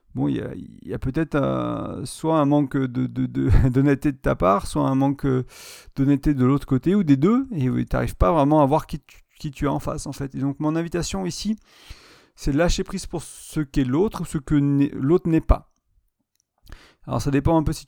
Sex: male